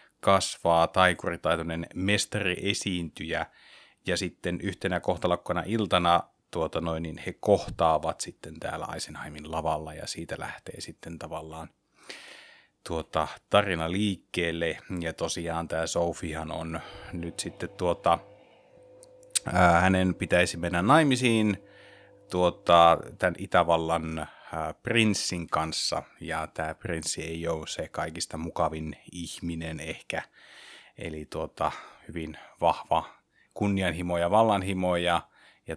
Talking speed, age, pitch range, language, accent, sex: 105 wpm, 30-49, 80-95 Hz, Finnish, native, male